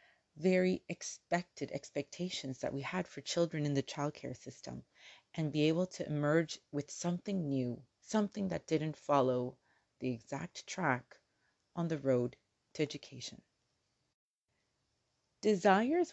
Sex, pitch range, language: female, 140-200 Hz, English